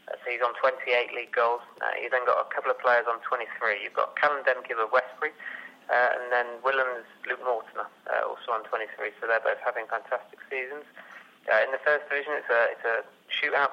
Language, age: English, 30-49